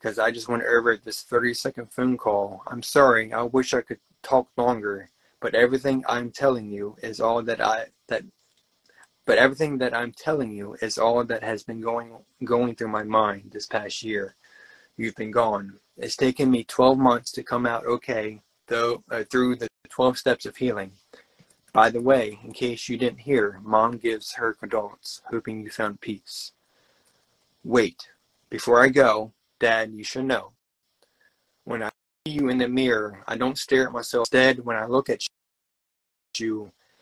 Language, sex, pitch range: English, male, 110-125 Hz